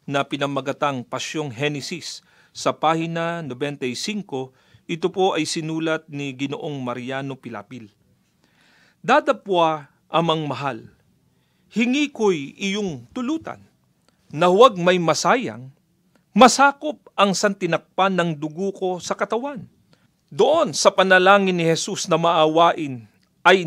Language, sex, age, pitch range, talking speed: Filipino, male, 40-59, 155-220 Hz, 105 wpm